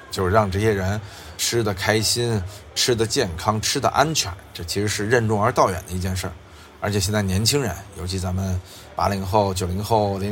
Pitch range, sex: 90-115 Hz, male